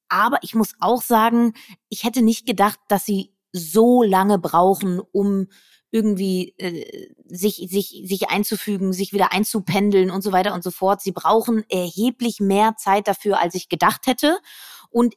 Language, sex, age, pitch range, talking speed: German, female, 20-39, 200-245 Hz, 160 wpm